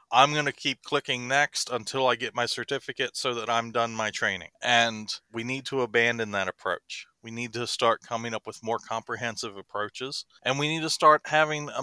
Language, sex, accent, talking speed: English, male, American, 210 wpm